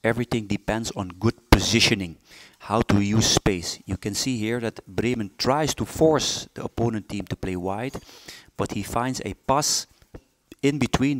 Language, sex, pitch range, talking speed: English, male, 100-125 Hz, 165 wpm